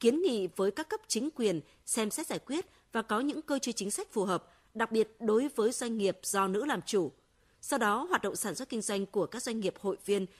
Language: Vietnamese